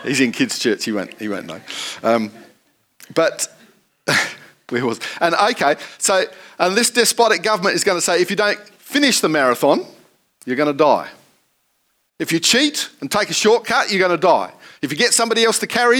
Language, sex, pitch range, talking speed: English, male, 170-235 Hz, 190 wpm